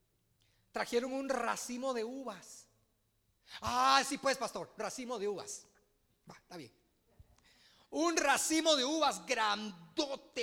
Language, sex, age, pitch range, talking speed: Spanish, male, 40-59, 195-275 Hz, 115 wpm